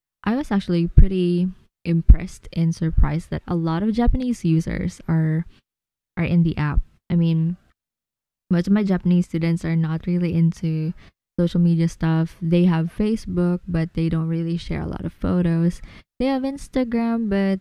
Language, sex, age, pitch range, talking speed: English, female, 20-39, 160-180 Hz, 165 wpm